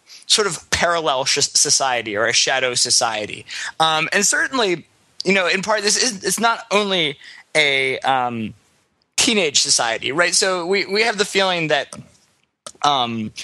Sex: male